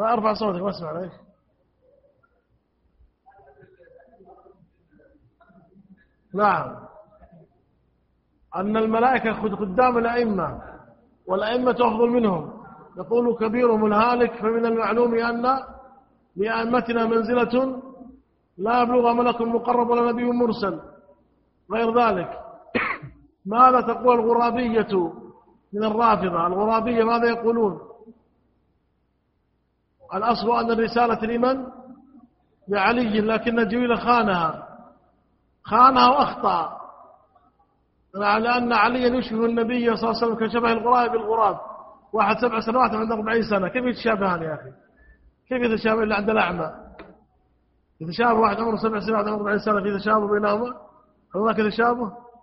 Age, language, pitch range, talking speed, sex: 50-69, Arabic, 205-240 Hz, 100 wpm, male